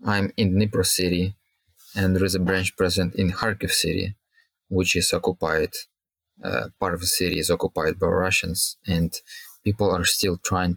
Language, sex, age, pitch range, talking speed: English, male, 20-39, 90-105 Hz, 165 wpm